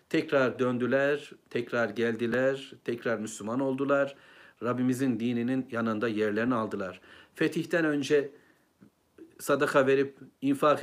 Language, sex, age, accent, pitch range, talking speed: Turkish, male, 60-79, native, 120-155 Hz, 95 wpm